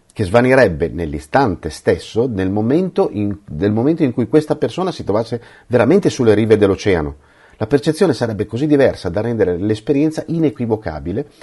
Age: 40-59